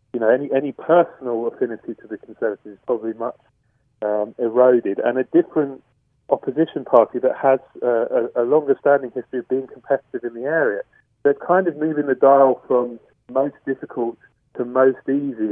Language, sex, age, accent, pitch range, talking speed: English, male, 40-59, British, 115-140 Hz, 170 wpm